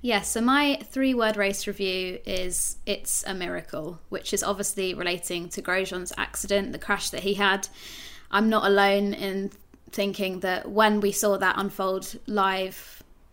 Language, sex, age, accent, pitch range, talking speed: English, female, 20-39, British, 195-220 Hz, 160 wpm